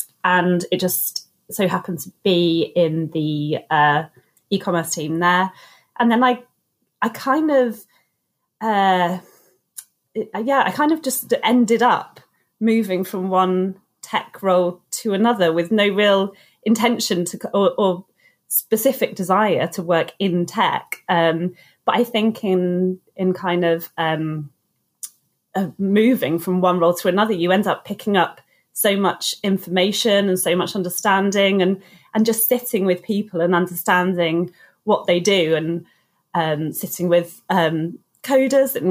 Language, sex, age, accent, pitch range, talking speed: English, female, 30-49, British, 175-220 Hz, 145 wpm